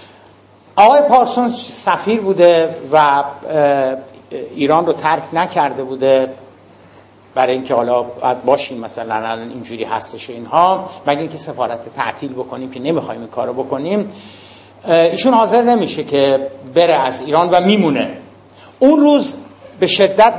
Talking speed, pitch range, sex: 120 wpm, 130-190 Hz, male